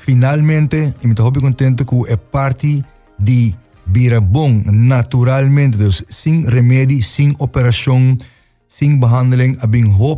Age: 30-49